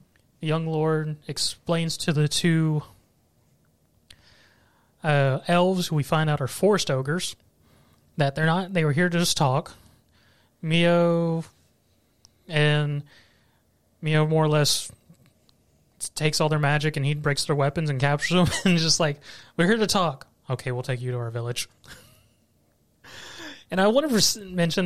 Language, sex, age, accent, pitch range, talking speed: English, male, 20-39, American, 135-165 Hz, 145 wpm